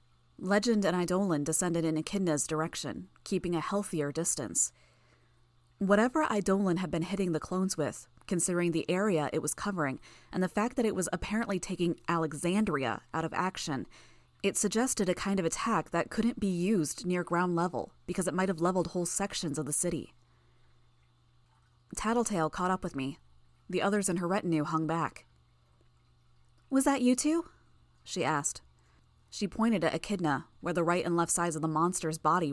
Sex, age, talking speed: female, 20-39, 170 wpm